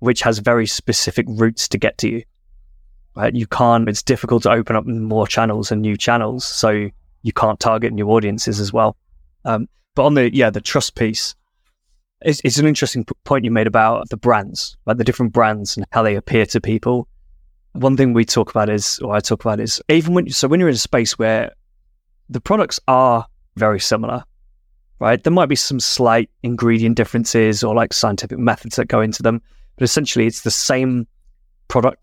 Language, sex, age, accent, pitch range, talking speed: English, male, 20-39, British, 105-125 Hz, 195 wpm